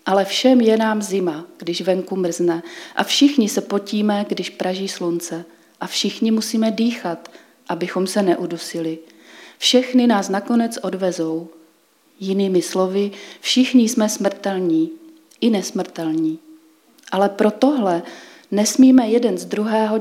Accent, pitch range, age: native, 180-220 Hz, 30-49